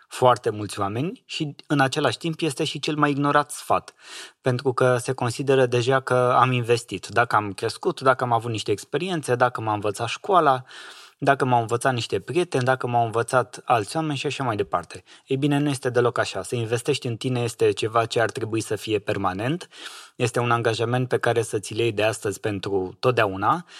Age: 20-39